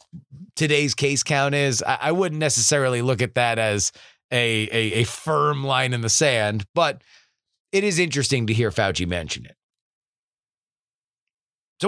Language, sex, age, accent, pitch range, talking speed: English, male, 30-49, American, 120-185 Hz, 145 wpm